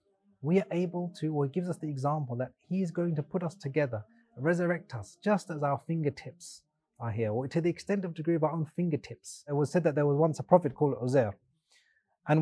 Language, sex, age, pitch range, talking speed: English, male, 30-49, 135-185 Hz, 225 wpm